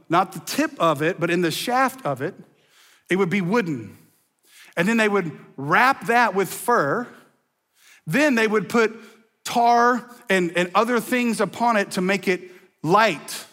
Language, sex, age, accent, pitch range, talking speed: English, male, 40-59, American, 175-230 Hz, 170 wpm